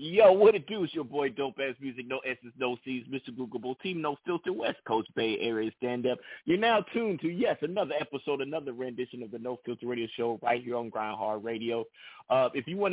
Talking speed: 235 wpm